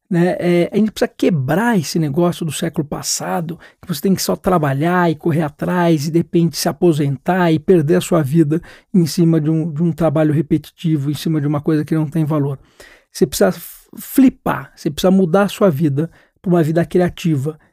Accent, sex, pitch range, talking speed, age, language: Brazilian, male, 165-200 Hz, 195 wpm, 60-79, Portuguese